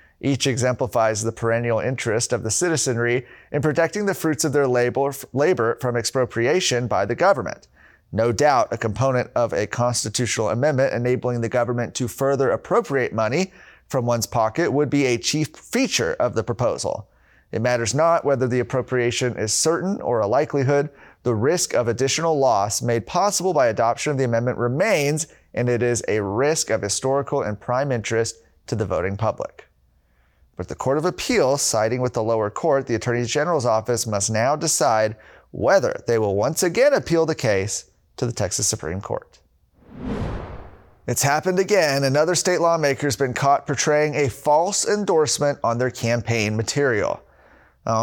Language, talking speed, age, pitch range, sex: English, 165 wpm, 30-49, 115-145 Hz, male